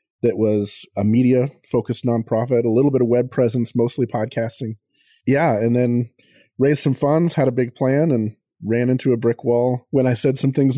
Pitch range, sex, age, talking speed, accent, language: 110-130 Hz, male, 30-49, 190 wpm, American, English